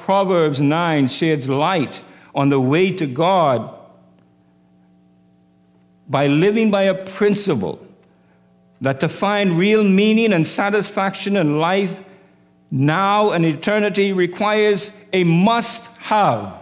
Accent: American